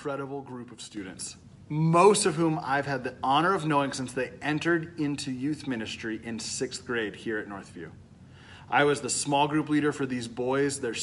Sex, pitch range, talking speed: male, 125-155 Hz, 190 wpm